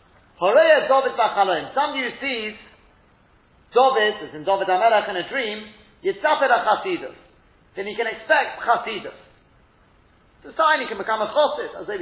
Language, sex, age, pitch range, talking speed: English, male, 40-59, 180-255 Hz, 120 wpm